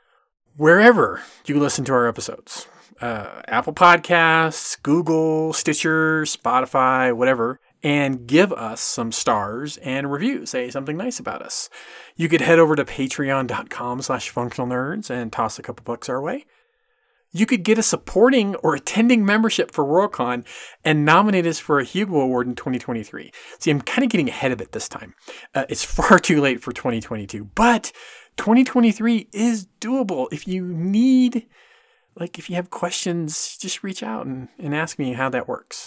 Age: 30-49